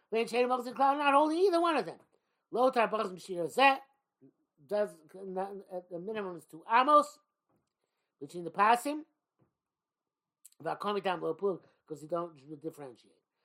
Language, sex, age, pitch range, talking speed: English, male, 60-79, 175-240 Hz, 155 wpm